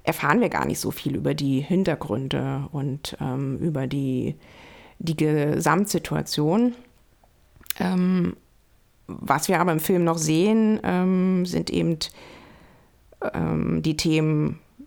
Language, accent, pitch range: German, German, 145-185 Hz